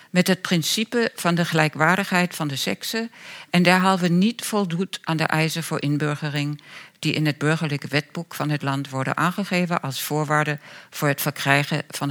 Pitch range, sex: 150-200 Hz, female